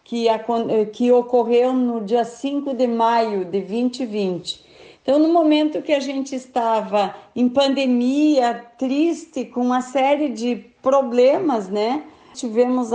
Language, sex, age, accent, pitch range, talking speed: Portuguese, female, 50-69, Brazilian, 230-275 Hz, 120 wpm